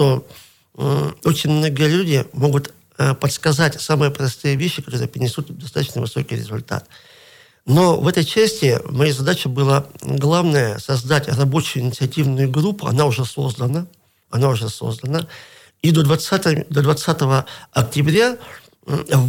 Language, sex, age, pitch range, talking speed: Russian, male, 50-69, 130-155 Hz, 120 wpm